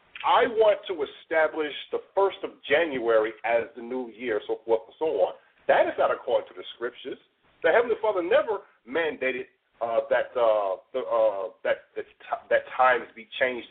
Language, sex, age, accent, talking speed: English, male, 40-59, American, 175 wpm